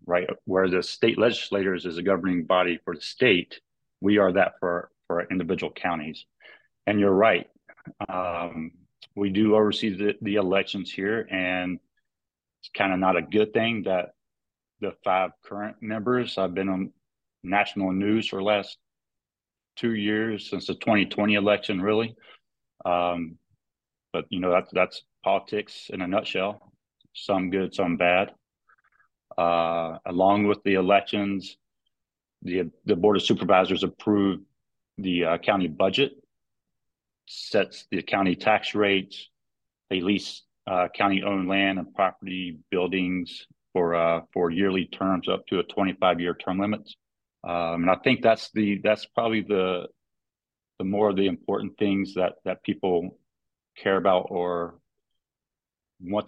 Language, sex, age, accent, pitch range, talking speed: English, male, 40-59, American, 90-105 Hz, 145 wpm